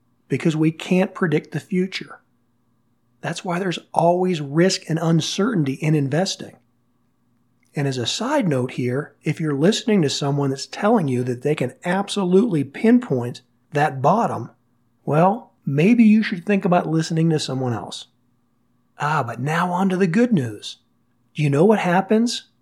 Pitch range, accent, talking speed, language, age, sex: 135-185 Hz, American, 155 wpm, English, 40-59, male